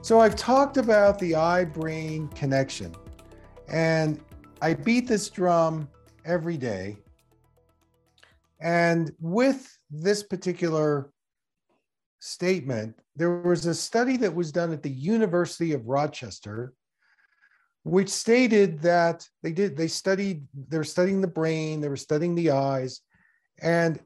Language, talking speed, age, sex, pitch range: English, 120 wpm, 50-69, male, 130-195 Hz